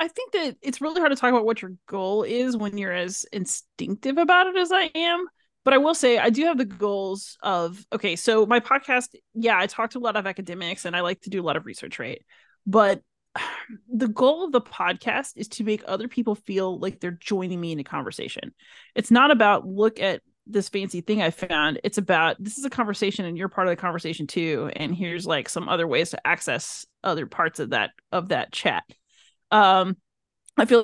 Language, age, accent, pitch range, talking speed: English, 30-49, American, 185-230 Hz, 220 wpm